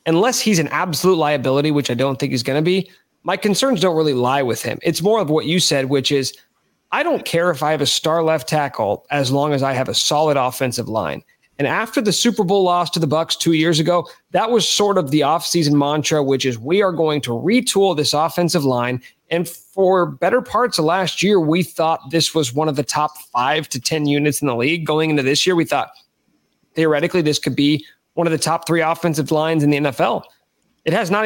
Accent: American